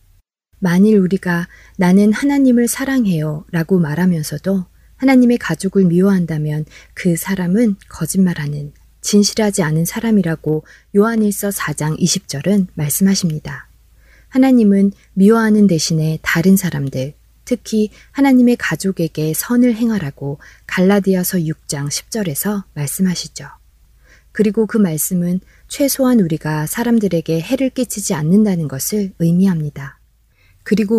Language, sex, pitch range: Korean, female, 160-210 Hz